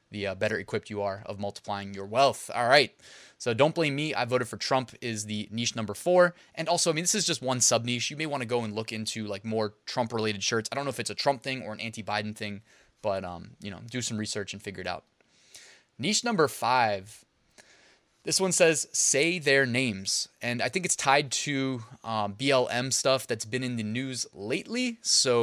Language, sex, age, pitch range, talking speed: English, male, 20-39, 105-130 Hz, 220 wpm